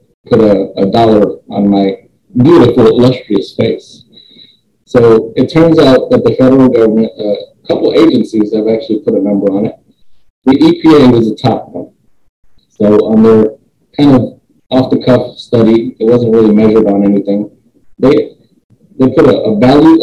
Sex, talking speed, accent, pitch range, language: male, 155 wpm, American, 105-130 Hz, English